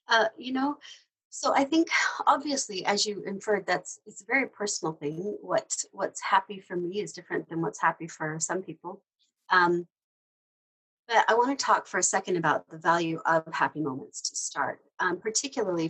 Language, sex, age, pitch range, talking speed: English, female, 40-59, 155-195 Hz, 180 wpm